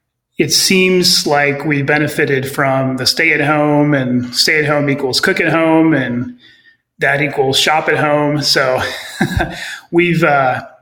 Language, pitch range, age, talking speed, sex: English, 135-160 Hz, 30-49, 150 wpm, male